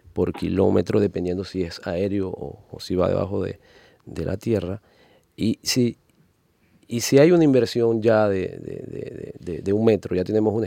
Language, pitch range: Spanish, 95-115 Hz